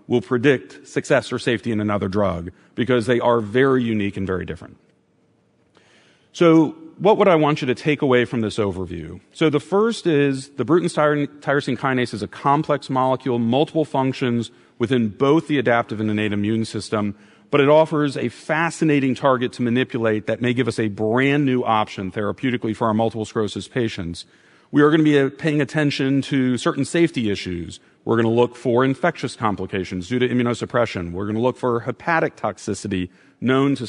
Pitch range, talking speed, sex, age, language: 105-135 Hz, 180 wpm, male, 40-59, English